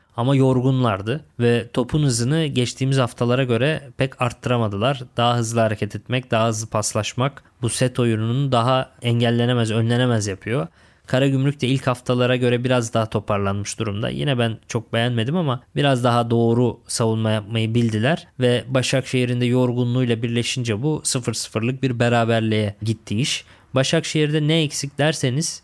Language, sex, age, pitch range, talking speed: Turkish, male, 20-39, 115-130 Hz, 140 wpm